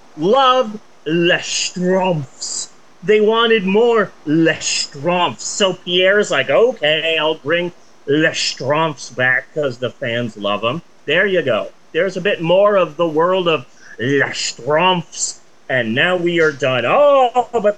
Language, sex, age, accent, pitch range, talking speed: English, male, 30-49, American, 155-200 Hz, 130 wpm